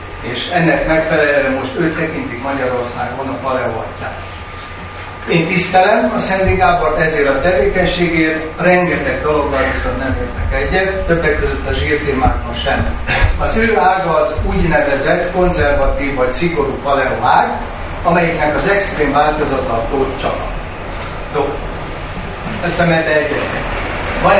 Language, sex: Hungarian, male